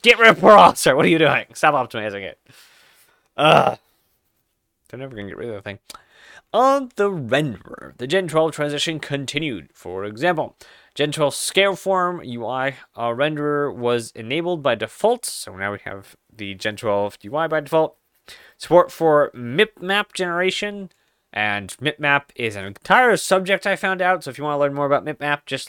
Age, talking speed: 20-39, 180 wpm